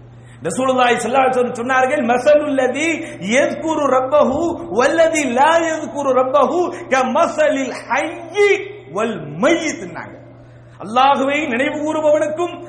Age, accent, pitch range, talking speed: 50-69, Indian, 240-305 Hz, 95 wpm